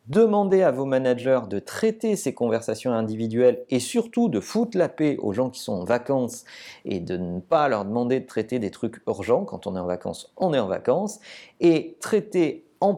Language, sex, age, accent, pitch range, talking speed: French, male, 40-59, French, 120-170 Hz, 205 wpm